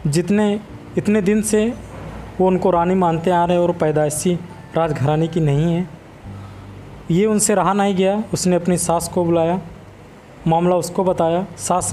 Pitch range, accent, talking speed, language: 145-180 Hz, native, 155 wpm, Hindi